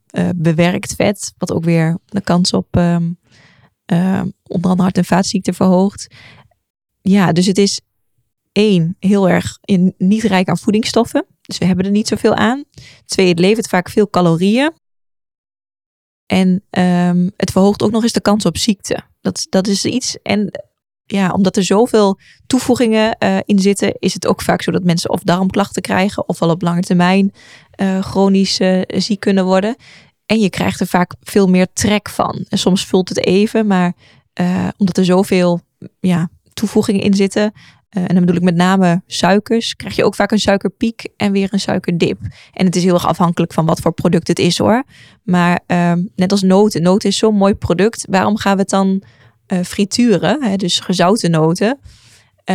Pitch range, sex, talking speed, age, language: 175-205 Hz, female, 185 wpm, 20-39, Dutch